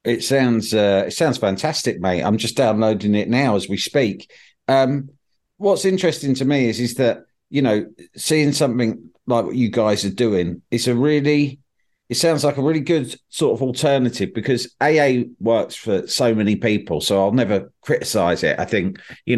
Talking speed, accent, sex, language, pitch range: 185 wpm, British, male, English, 100-130 Hz